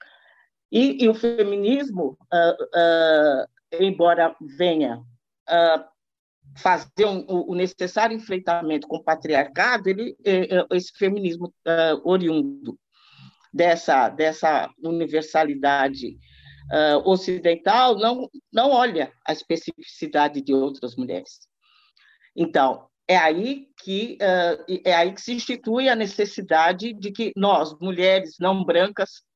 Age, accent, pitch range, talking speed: 50-69, Brazilian, 160-220 Hz, 110 wpm